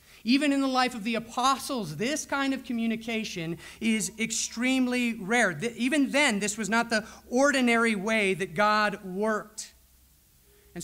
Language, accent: English, American